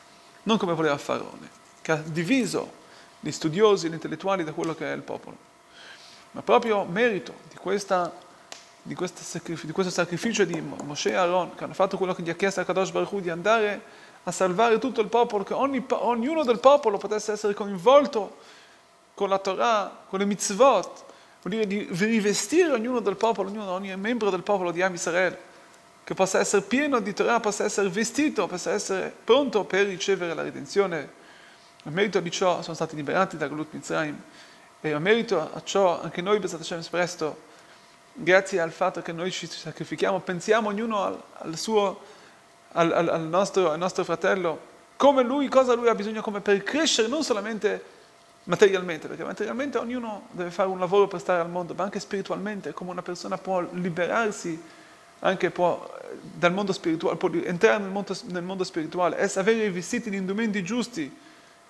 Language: Italian